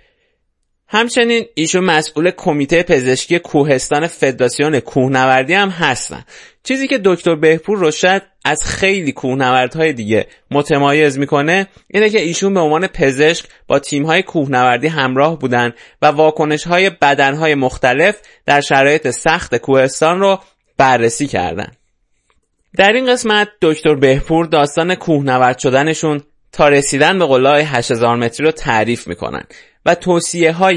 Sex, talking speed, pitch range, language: male, 125 wpm, 135-175 Hz, Persian